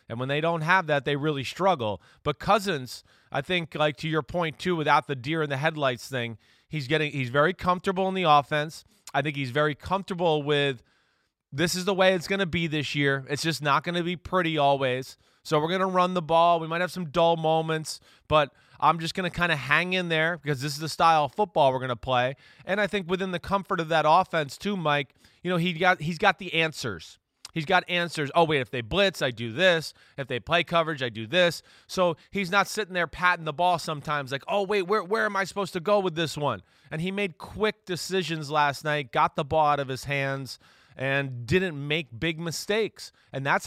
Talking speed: 235 wpm